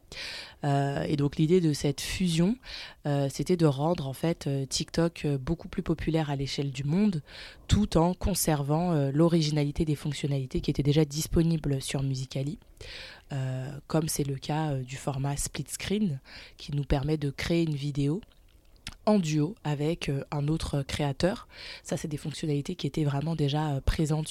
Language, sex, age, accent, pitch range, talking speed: French, female, 20-39, French, 145-170 Hz, 165 wpm